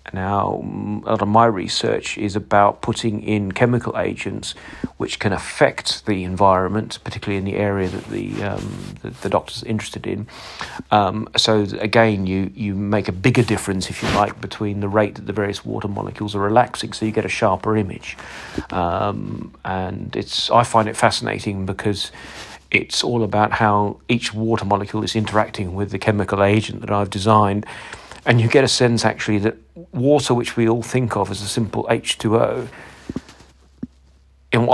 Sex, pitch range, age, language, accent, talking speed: male, 100-115 Hz, 40-59, English, British, 170 wpm